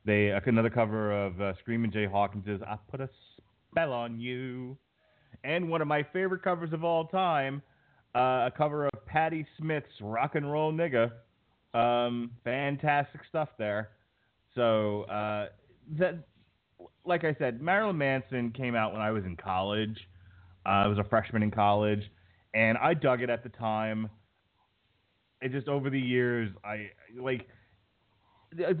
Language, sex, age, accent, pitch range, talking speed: English, male, 30-49, American, 105-135 Hz, 155 wpm